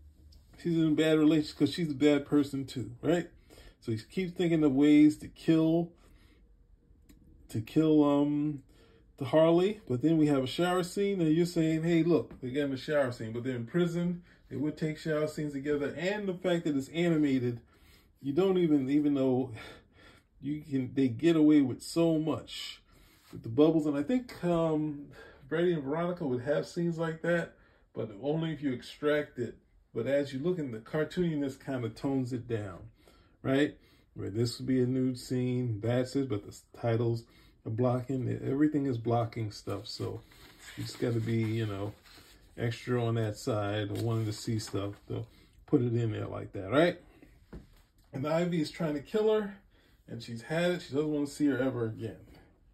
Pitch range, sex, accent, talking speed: 115-155 Hz, male, American, 190 wpm